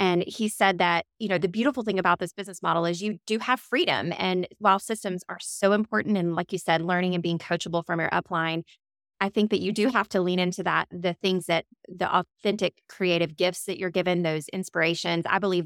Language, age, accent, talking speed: English, 20-39, American, 225 wpm